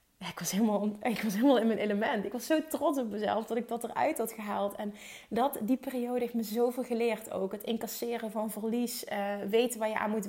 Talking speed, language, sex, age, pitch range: 210 wpm, Dutch, female, 30-49, 205-245 Hz